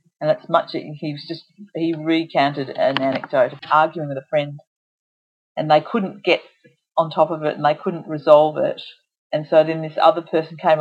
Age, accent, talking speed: 40-59, Australian, 195 wpm